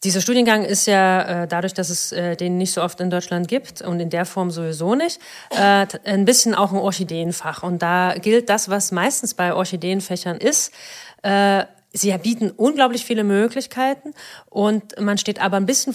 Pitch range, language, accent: 180-215 Hz, German, German